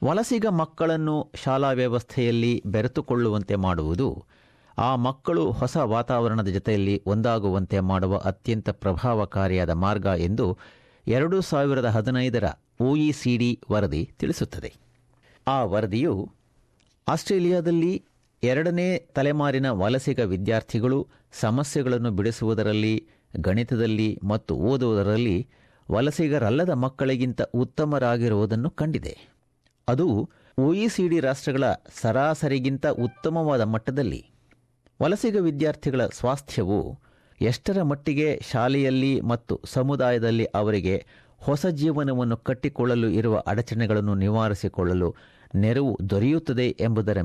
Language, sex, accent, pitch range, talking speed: Kannada, male, native, 105-140 Hz, 85 wpm